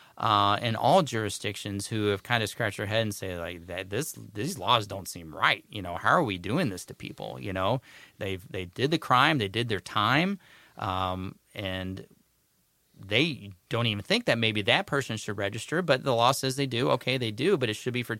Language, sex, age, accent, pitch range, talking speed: English, male, 30-49, American, 100-125 Hz, 220 wpm